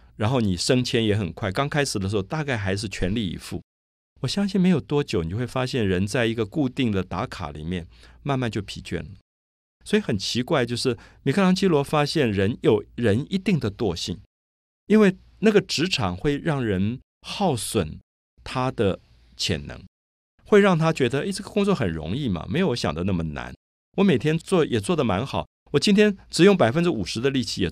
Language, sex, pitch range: Chinese, male, 90-150 Hz